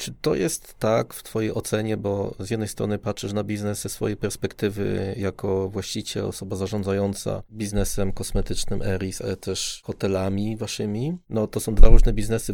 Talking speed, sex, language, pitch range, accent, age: 165 wpm, male, Polish, 100-115 Hz, native, 20-39